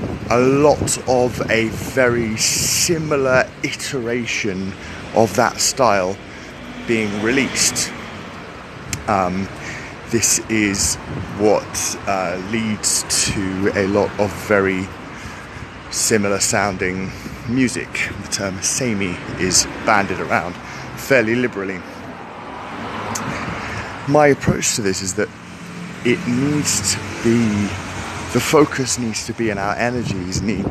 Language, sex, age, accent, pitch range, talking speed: English, male, 30-49, British, 95-120 Hz, 105 wpm